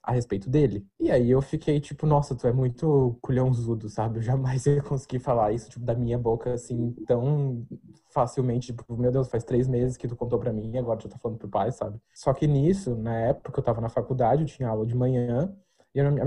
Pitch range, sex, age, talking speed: 120-150 Hz, male, 20-39, 235 wpm